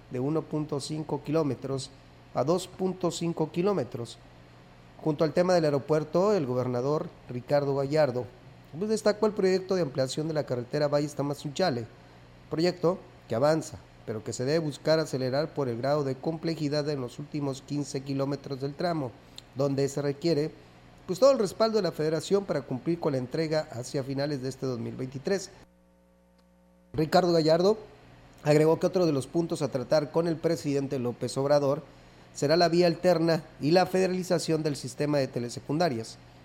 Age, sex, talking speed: 40-59, male, 155 wpm